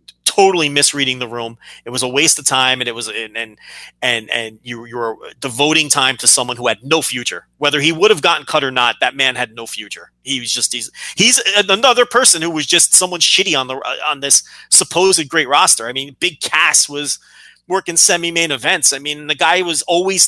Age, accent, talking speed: 30-49, American, 215 wpm